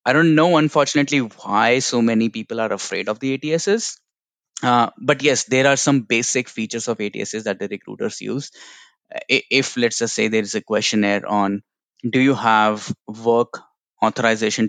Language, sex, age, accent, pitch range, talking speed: English, male, 20-39, Indian, 105-145 Hz, 170 wpm